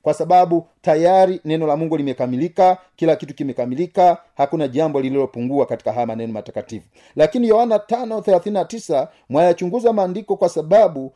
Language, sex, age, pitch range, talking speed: Swahili, male, 40-59, 160-210 Hz, 130 wpm